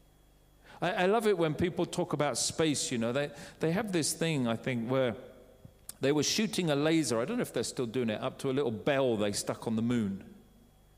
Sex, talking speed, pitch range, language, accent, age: male, 225 wpm, 135-200 Hz, English, British, 40-59